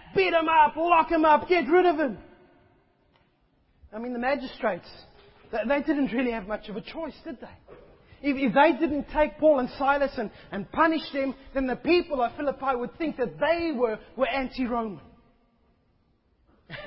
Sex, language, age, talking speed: male, English, 30-49, 175 wpm